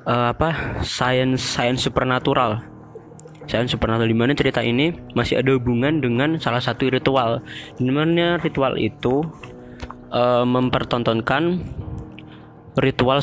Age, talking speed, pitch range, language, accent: 20-39, 105 wpm, 120-135 Hz, Indonesian, native